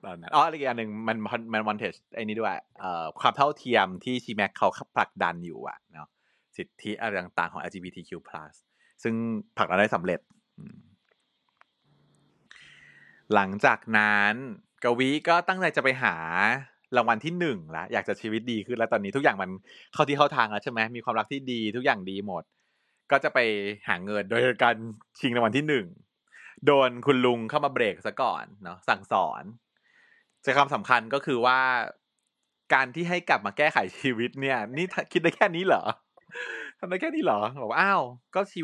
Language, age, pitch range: Thai, 20-39, 105-150 Hz